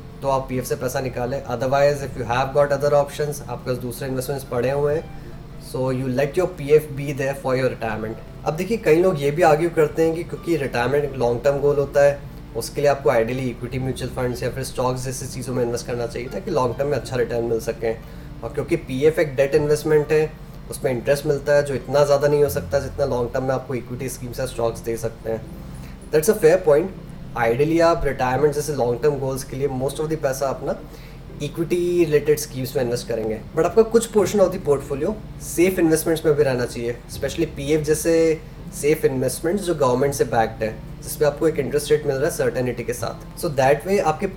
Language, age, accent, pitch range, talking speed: Hindi, 20-39, native, 125-155 Hz, 220 wpm